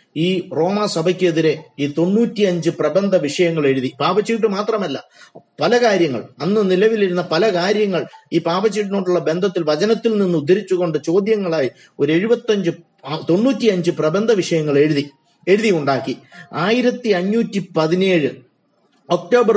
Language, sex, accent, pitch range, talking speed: Malayalam, male, native, 155-200 Hz, 100 wpm